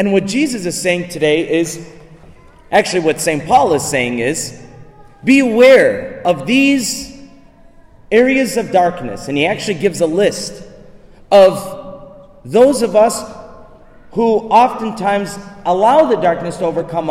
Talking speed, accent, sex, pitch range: 130 wpm, American, male, 160-230 Hz